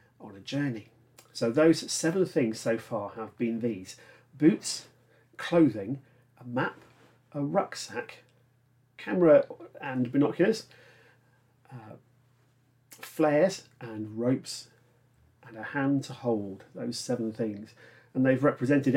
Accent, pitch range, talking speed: British, 115-135 Hz, 115 wpm